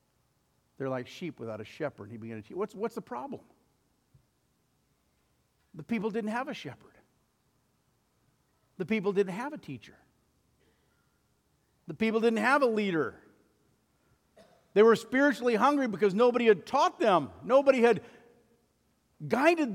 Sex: male